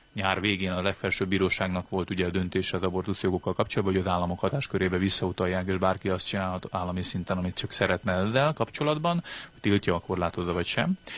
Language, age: Hungarian, 30-49